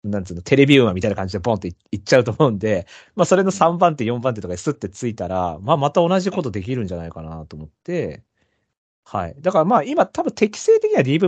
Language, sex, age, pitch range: Japanese, male, 40-59, 105-170 Hz